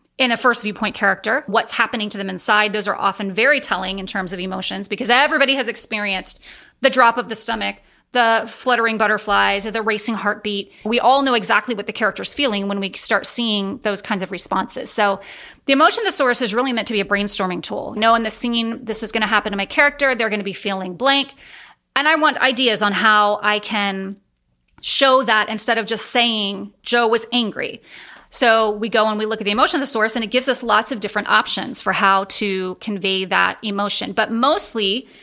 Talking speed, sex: 215 wpm, female